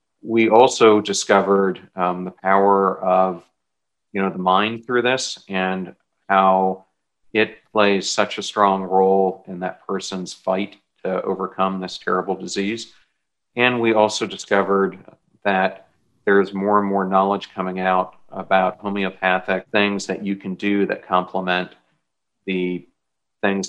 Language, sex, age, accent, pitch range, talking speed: English, male, 40-59, American, 95-100 Hz, 135 wpm